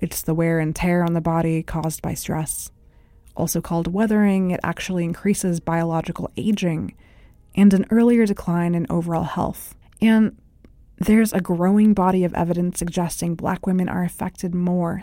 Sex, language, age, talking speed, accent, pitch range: female, English, 20-39, 155 wpm, American, 165-185 Hz